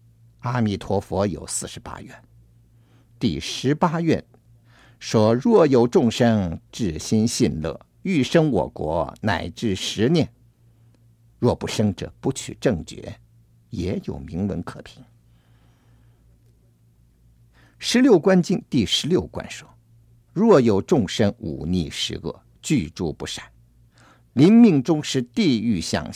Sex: male